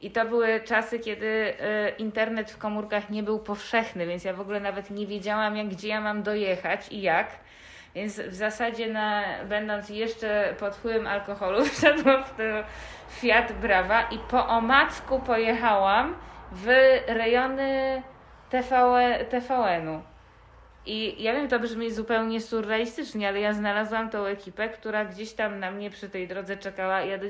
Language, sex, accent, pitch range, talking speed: Polish, female, native, 195-225 Hz, 155 wpm